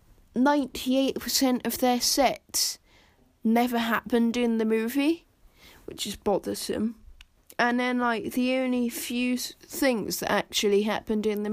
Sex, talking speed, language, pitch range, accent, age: female, 120 wpm, English, 180-250 Hz, British, 10-29